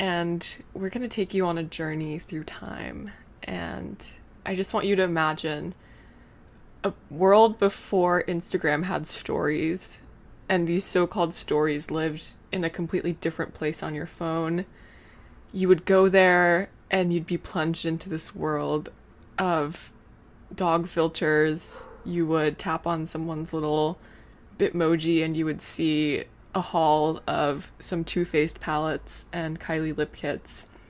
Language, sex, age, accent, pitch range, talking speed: English, female, 20-39, American, 155-180 Hz, 140 wpm